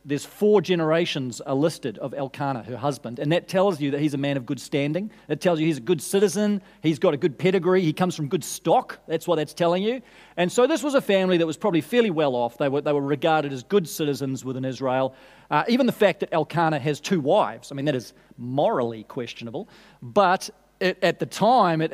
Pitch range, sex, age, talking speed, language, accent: 140-185 Hz, male, 40-59, 230 wpm, English, Australian